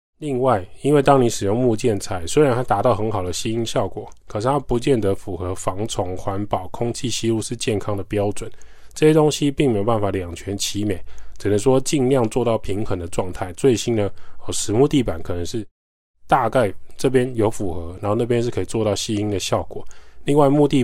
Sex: male